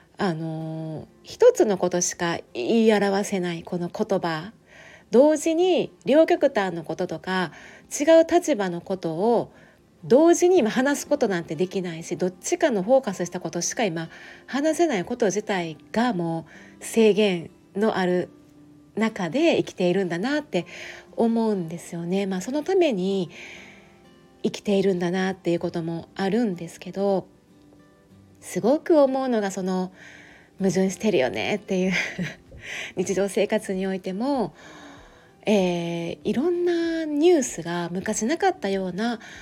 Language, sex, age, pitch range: Japanese, female, 30-49, 175-240 Hz